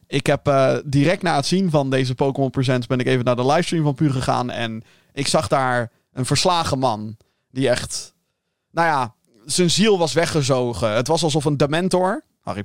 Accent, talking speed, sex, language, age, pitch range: Dutch, 195 wpm, male, Dutch, 20-39, 125-165 Hz